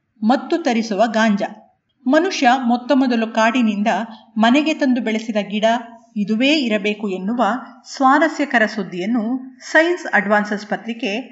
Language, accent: Kannada, native